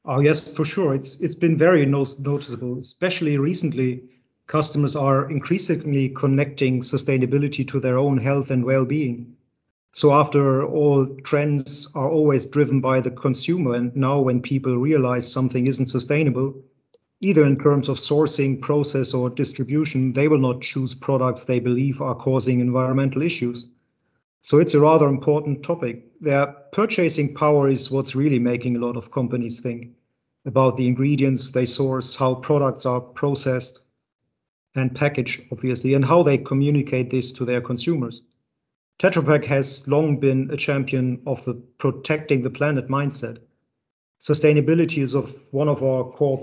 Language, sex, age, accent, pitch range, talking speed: English, male, 40-59, German, 130-145 Hz, 150 wpm